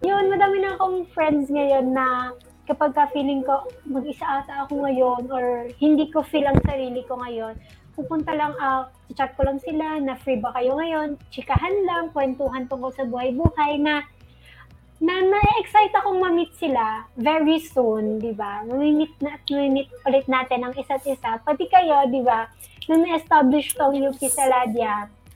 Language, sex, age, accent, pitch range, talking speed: Filipino, female, 20-39, native, 250-310 Hz, 155 wpm